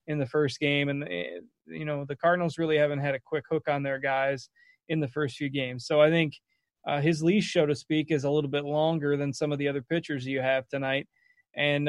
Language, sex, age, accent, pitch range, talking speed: English, male, 20-39, American, 135-155 Hz, 235 wpm